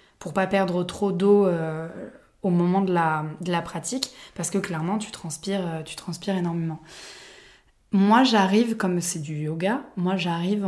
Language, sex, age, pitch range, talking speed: French, female, 20-39, 170-200 Hz, 170 wpm